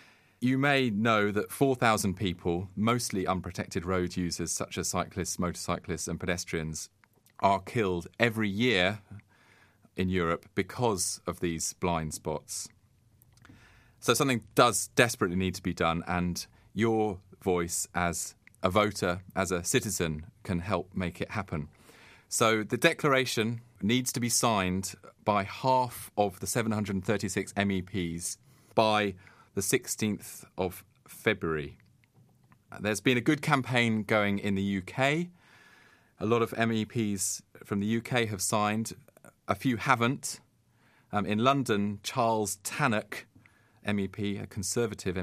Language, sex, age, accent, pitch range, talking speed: English, male, 30-49, British, 90-115 Hz, 125 wpm